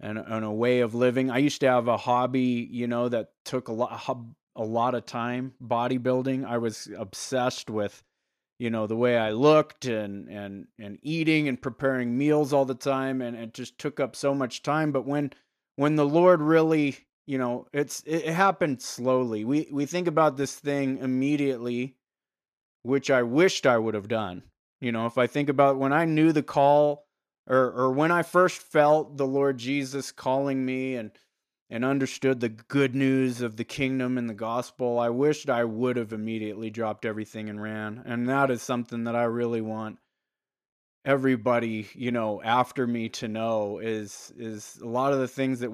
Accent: American